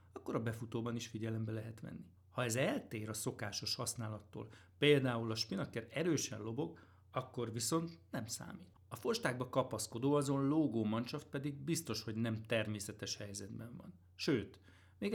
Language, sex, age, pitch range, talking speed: Hungarian, male, 60-79, 110-135 Hz, 145 wpm